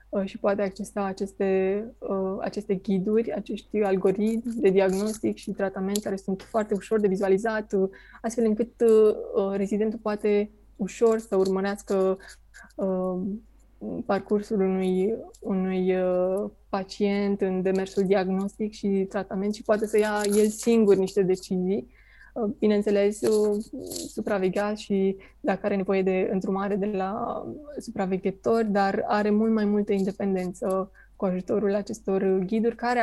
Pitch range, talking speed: 195-215 Hz, 115 wpm